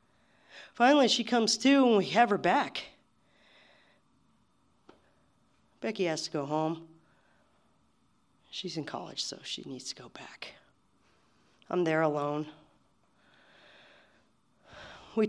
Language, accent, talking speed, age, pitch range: English, American, 105 wpm, 40-59, 145-190 Hz